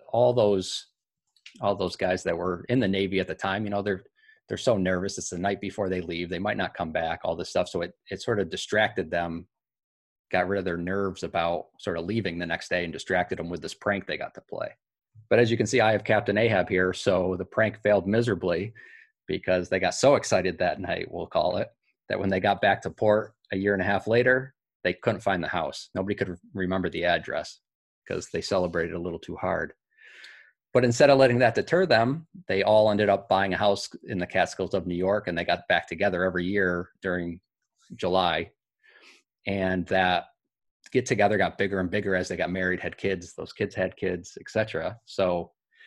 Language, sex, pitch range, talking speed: English, male, 90-110 Hz, 220 wpm